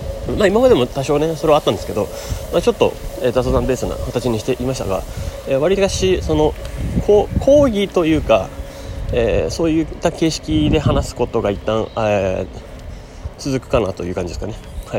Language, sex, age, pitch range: Japanese, male, 30-49, 95-145 Hz